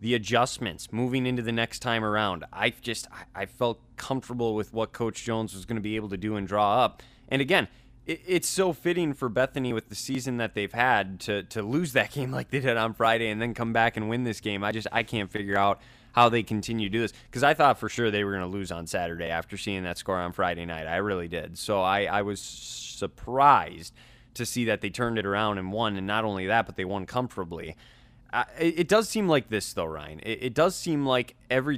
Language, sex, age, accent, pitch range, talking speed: English, male, 20-39, American, 105-125 Hz, 235 wpm